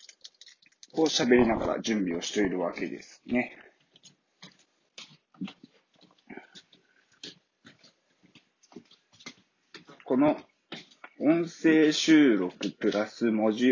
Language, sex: Japanese, male